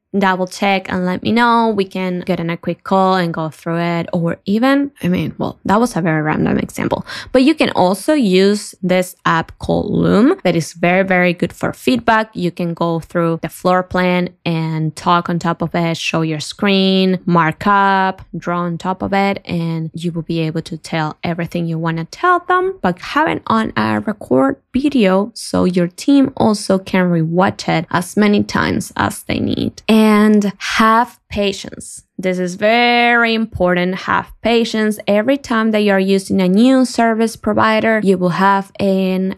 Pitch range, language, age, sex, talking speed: 175-220 Hz, English, 20-39, female, 185 wpm